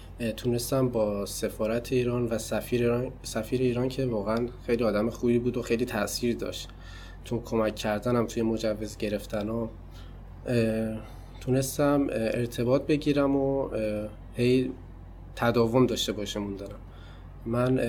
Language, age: Persian, 20-39